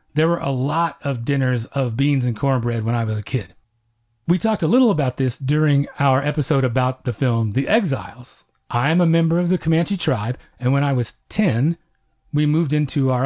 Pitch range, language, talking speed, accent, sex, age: 130-175 Hz, English, 210 wpm, American, male, 40-59